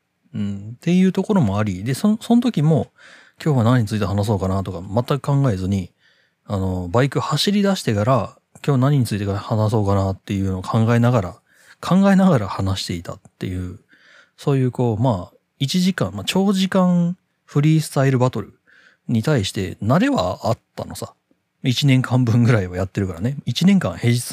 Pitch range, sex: 105-165 Hz, male